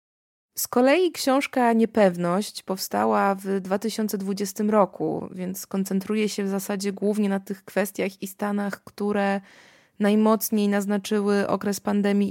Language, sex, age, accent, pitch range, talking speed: Polish, female, 20-39, native, 195-225 Hz, 115 wpm